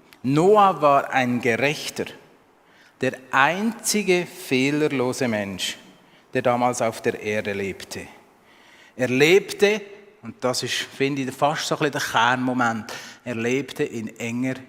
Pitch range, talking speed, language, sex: 125-160 Hz, 115 wpm, German, male